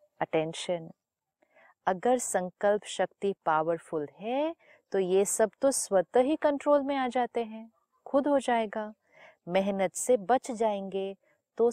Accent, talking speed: native, 130 wpm